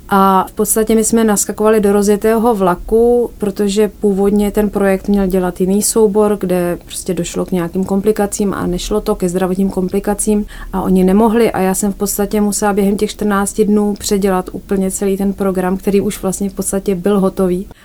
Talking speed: 180 wpm